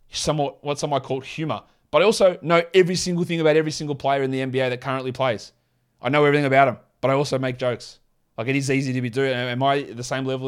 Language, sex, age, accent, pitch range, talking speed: English, male, 20-39, Australian, 125-155 Hz, 265 wpm